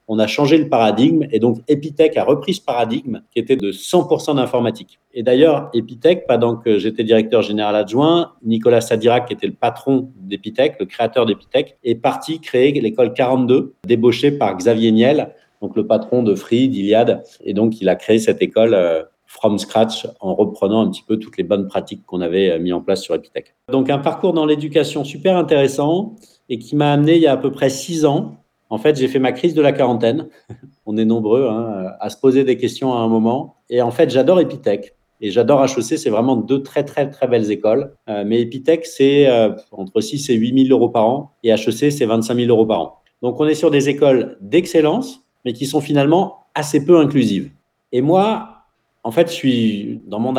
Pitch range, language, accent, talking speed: 115-150 Hz, French, French, 205 wpm